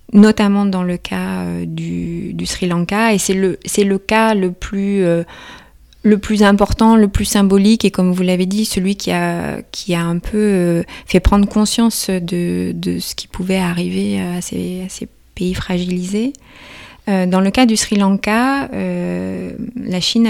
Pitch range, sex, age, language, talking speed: 175-210 Hz, female, 20-39, French, 185 wpm